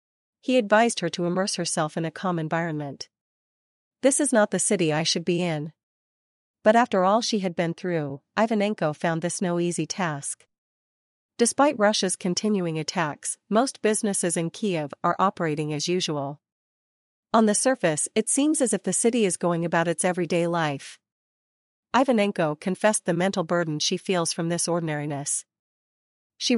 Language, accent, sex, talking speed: English, American, female, 160 wpm